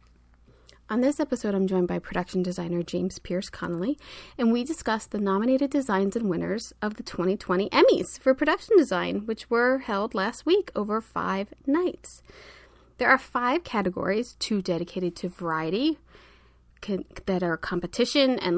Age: 30-49